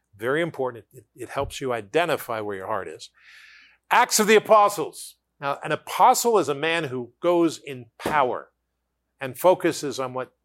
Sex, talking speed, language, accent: male, 165 wpm, English, American